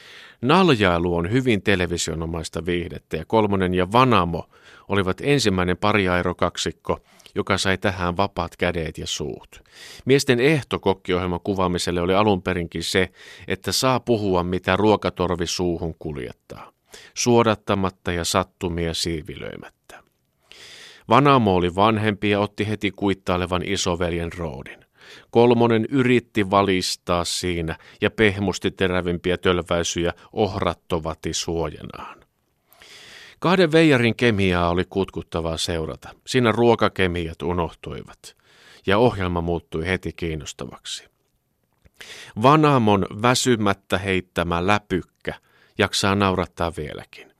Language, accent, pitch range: Finnish, native, 85-105 Hz